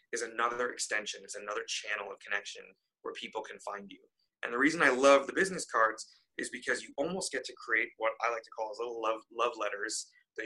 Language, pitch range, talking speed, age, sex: English, 115-150 Hz, 220 wpm, 20-39, male